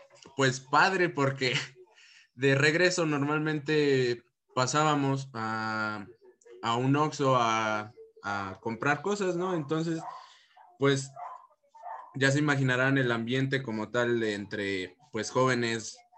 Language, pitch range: Spanish, 115-150 Hz